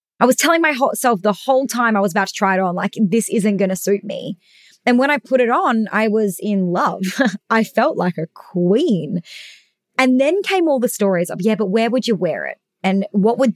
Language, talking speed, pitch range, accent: English, 245 wpm, 185-230 Hz, Australian